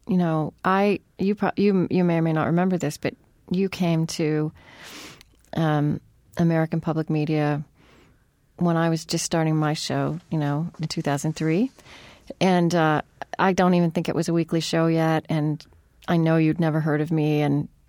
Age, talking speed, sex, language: 30-49, 180 wpm, female, English